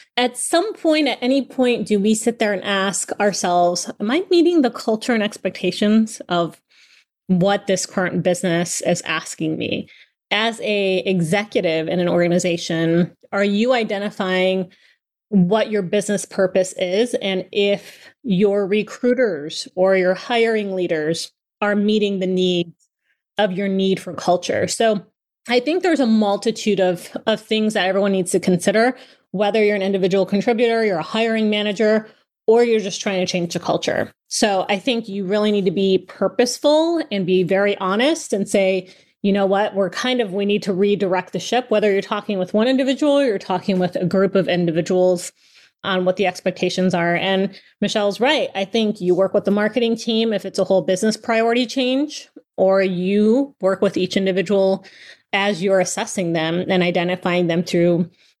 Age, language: 30-49, English